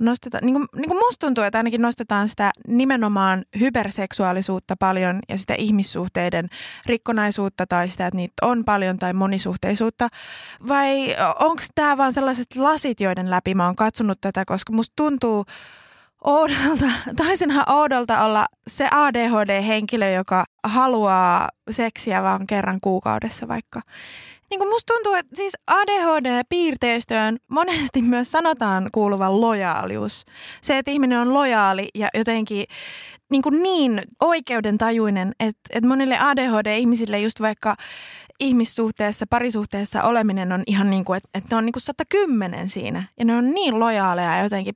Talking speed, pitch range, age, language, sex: 135 wpm, 200-265 Hz, 20-39, Finnish, female